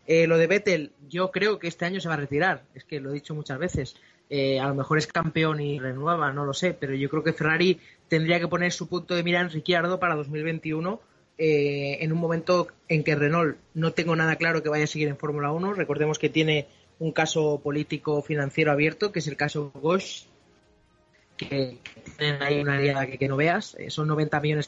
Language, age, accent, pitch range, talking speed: Spanish, 20-39, Spanish, 145-170 Hz, 220 wpm